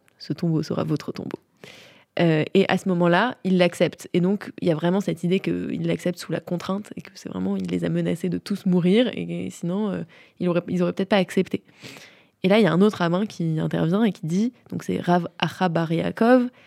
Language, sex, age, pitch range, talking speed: French, female, 20-39, 180-225 Hz, 225 wpm